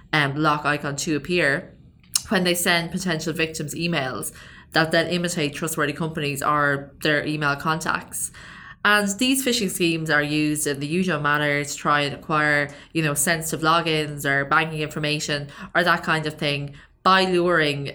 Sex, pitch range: female, 145-165 Hz